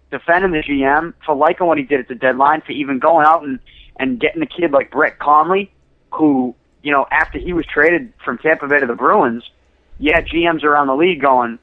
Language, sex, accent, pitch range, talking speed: English, male, American, 130-170 Hz, 215 wpm